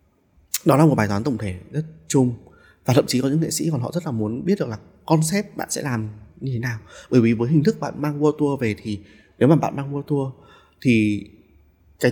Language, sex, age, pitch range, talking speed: Vietnamese, male, 20-39, 105-155 Hz, 250 wpm